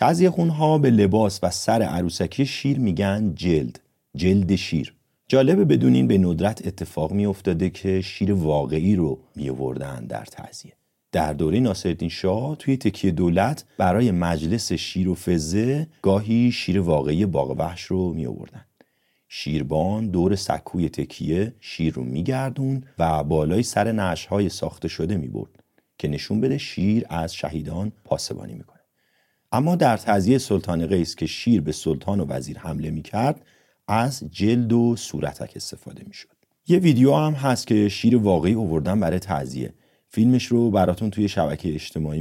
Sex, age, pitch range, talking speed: male, 40-59, 80-115 Hz, 150 wpm